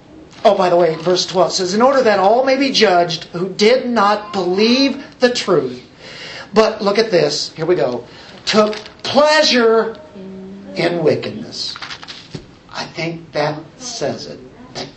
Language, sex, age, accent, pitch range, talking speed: English, male, 50-69, American, 175-235 Hz, 150 wpm